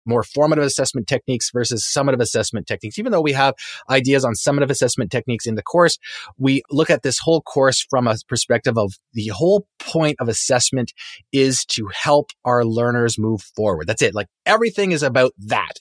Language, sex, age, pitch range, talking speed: English, male, 30-49, 115-145 Hz, 185 wpm